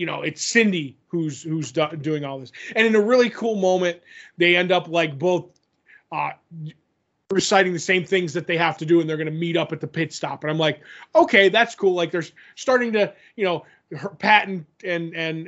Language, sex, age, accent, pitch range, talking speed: English, male, 20-39, American, 155-185 Hz, 215 wpm